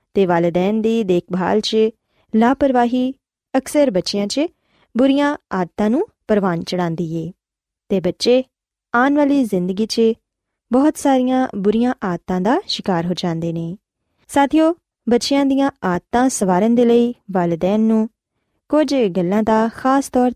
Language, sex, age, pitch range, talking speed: Punjabi, female, 20-39, 190-270 Hz, 125 wpm